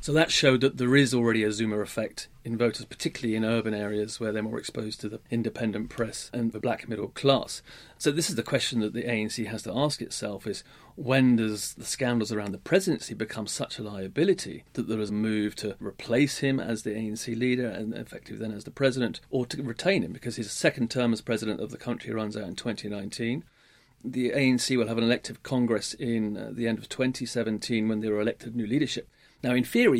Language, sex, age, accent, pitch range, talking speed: English, male, 40-59, British, 110-130 Hz, 220 wpm